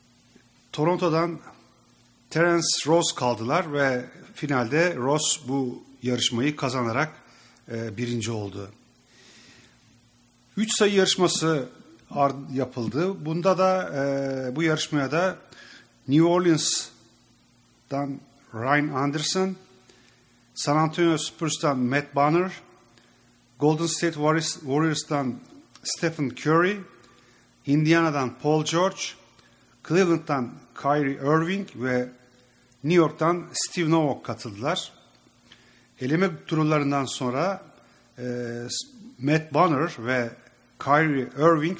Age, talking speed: 40-59, 80 wpm